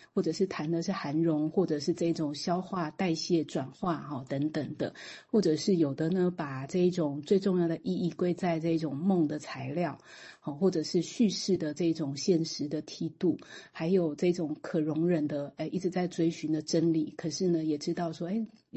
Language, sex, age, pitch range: Chinese, female, 30-49, 155-180 Hz